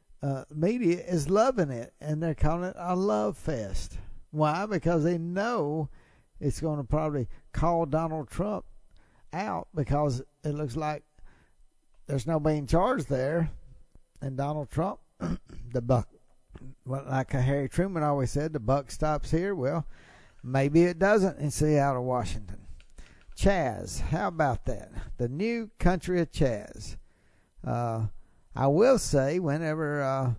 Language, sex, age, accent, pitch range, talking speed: English, male, 60-79, American, 120-155 Hz, 140 wpm